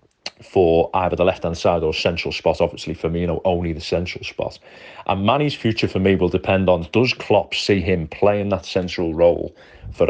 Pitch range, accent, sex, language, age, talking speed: 85-95 Hz, British, male, English, 30-49, 210 wpm